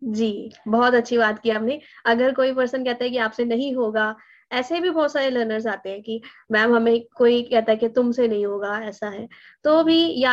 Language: Hindi